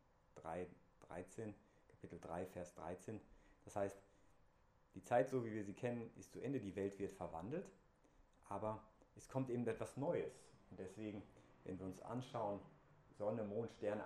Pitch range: 95-120 Hz